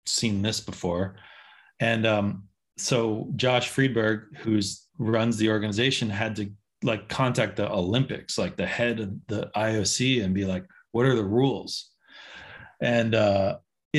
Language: English